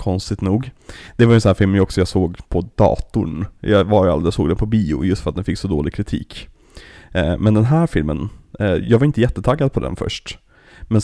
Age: 30-49